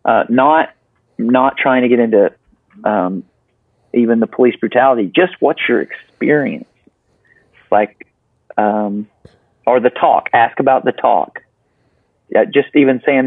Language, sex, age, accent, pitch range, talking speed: English, male, 40-59, American, 110-130 Hz, 130 wpm